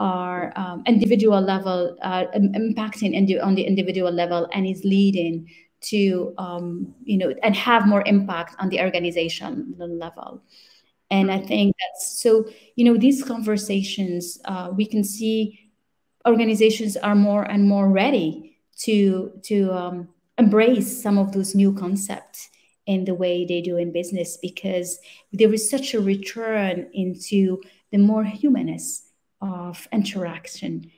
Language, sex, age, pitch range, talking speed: English, female, 30-49, 175-205 Hz, 140 wpm